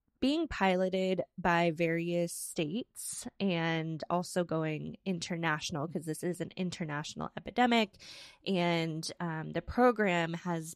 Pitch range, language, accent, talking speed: 165-195 Hz, English, American, 110 wpm